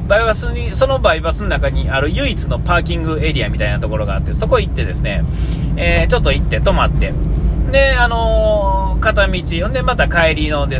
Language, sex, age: Japanese, male, 40-59